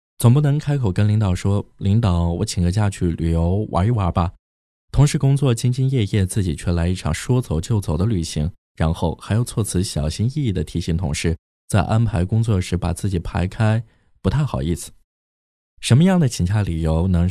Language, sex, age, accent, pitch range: Chinese, male, 20-39, native, 80-110 Hz